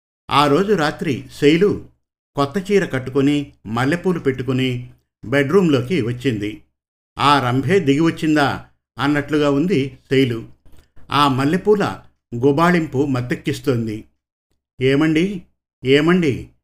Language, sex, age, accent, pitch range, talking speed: Telugu, male, 50-69, native, 115-150 Hz, 85 wpm